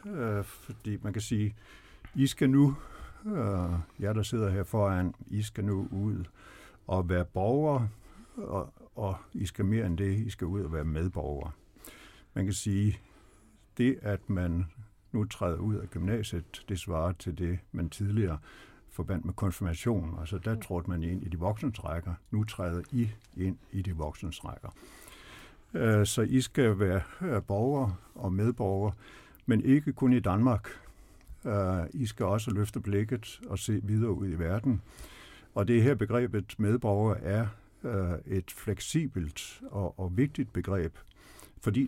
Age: 60-79